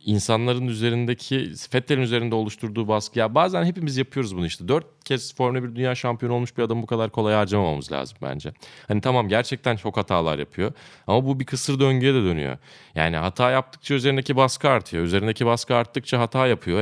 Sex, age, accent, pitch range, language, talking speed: male, 30-49, native, 90-125 Hz, Turkish, 180 wpm